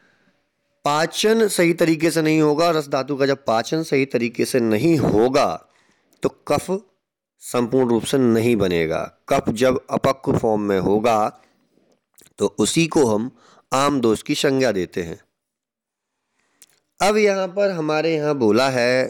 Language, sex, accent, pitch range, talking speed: Hindi, male, native, 125-185 Hz, 145 wpm